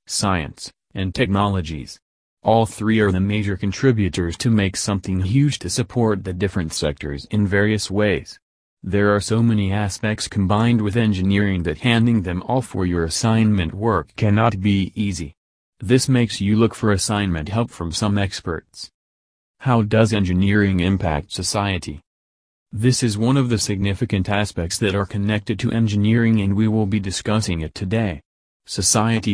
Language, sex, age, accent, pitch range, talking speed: English, male, 30-49, American, 95-110 Hz, 155 wpm